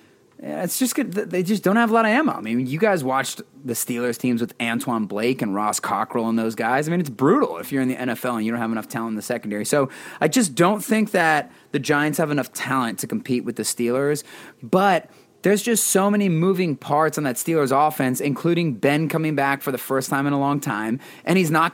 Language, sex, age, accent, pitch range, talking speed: English, male, 30-49, American, 125-190 Hz, 245 wpm